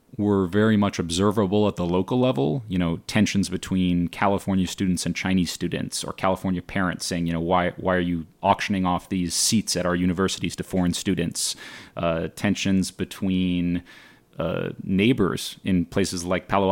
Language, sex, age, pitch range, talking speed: English, male, 30-49, 90-105 Hz, 165 wpm